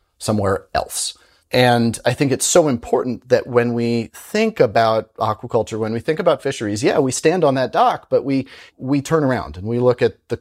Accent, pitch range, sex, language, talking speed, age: American, 110-150 Hz, male, English, 200 wpm, 30-49